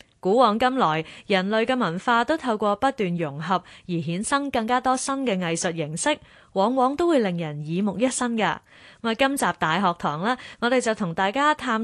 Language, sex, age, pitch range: Chinese, female, 20-39, 175-250 Hz